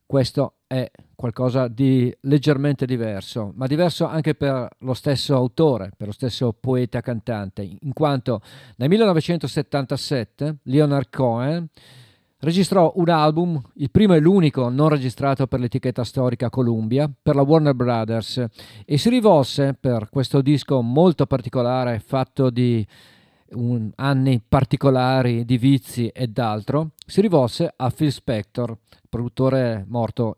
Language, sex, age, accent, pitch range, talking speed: Italian, male, 40-59, native, 120-145 Hz, 125 wpm